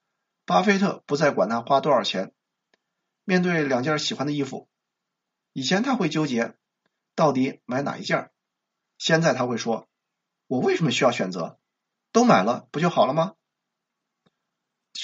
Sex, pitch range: male, 140-200 Hz